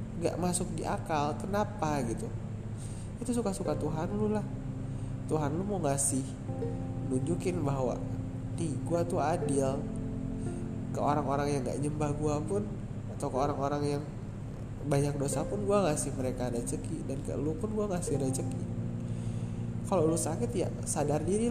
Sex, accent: male, native